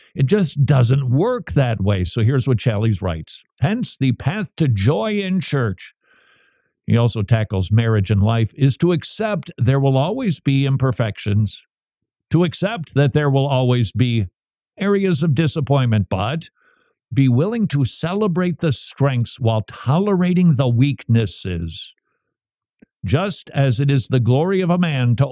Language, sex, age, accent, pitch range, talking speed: English, male, 50-69, American, 115-155 Hz, 150 wpm